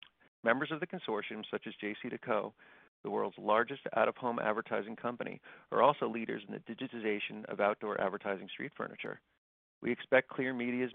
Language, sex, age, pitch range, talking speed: English, male, 40-59, 105-125 Hz, 160 wpm